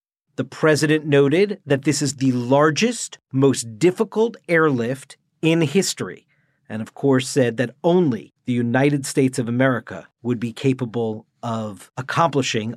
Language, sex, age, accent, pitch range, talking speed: English, male, 50-69, American, 140-195 Hz, 135 wpm